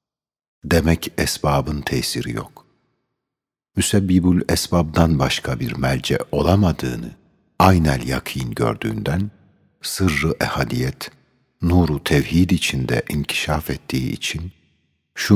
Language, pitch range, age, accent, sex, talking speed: Turkish, 70-85 Hz, 60-79, native, male, 85 wpm